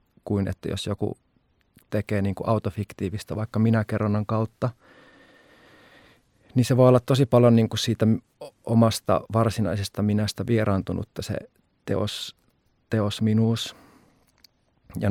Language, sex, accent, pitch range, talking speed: Finnish, male, native, 100-110 Hz, 115 wpm